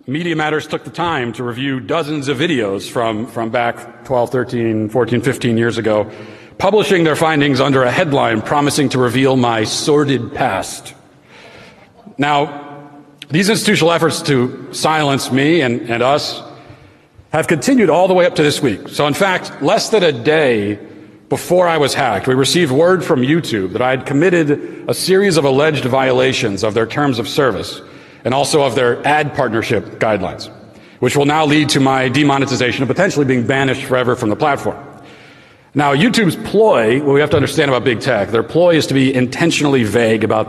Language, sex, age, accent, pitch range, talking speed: English, male, 40-59, American, 120-150 Hz, 180 wpm